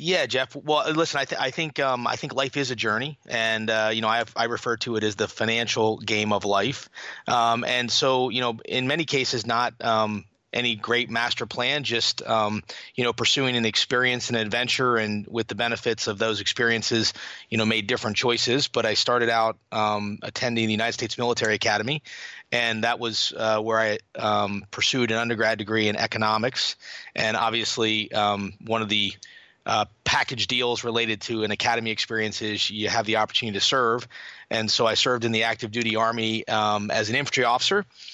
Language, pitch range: English, 110-125 Hz